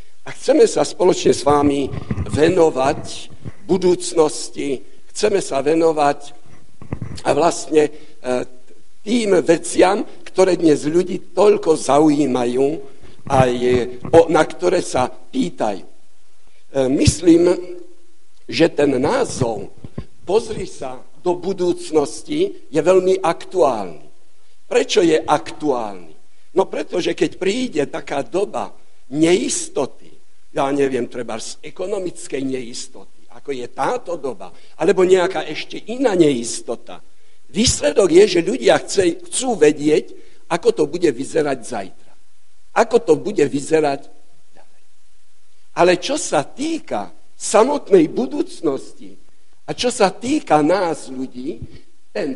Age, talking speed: 60-79, 105 wpm